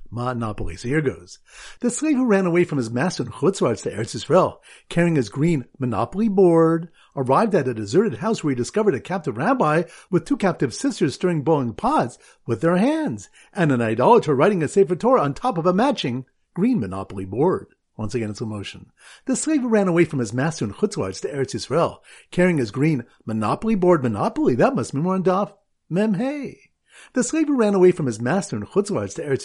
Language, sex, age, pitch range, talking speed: English, male, 50-69, 135-200 Hz, 200 wpm